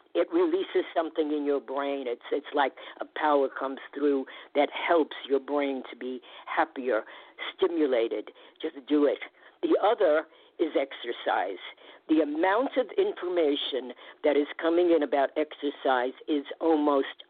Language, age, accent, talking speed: English, 50-69, American, 140 wpm